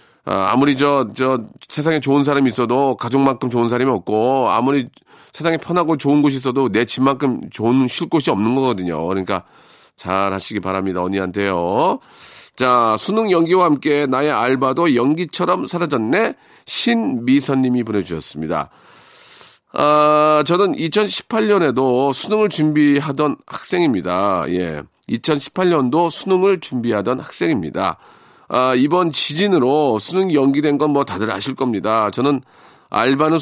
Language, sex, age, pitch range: Korean, male, 40-59, 130-165 Hz